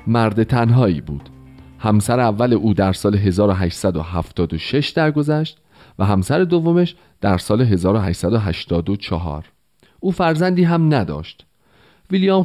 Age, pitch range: 40-59, 95-155 Hz